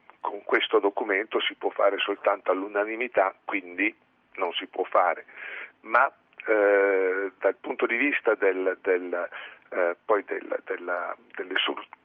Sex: male